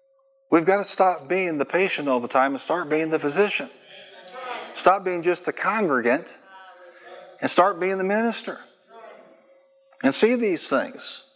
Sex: male